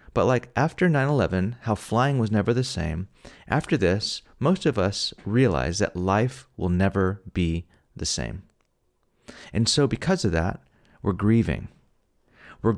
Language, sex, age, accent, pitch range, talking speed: English, male, 30-49, American, 90-115 Hz, 145 wpm